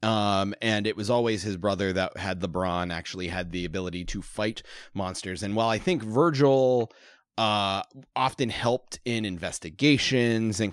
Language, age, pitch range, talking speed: English, 30-49, 90-115 Hz, 160 wpm